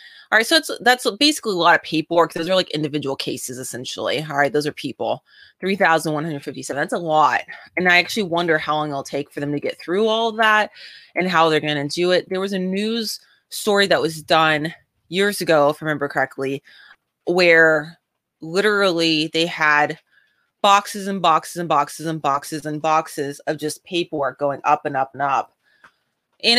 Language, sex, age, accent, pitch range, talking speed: English, female, 20-39, American, 150-185 Hz, 190 wpm